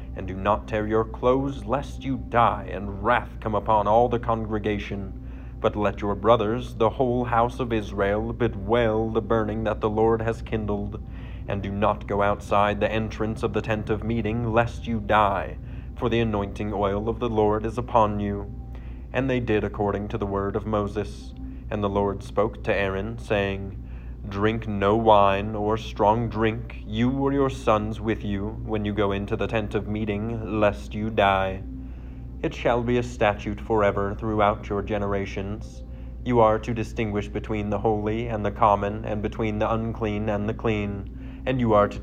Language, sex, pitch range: English, male, 100-110 Hz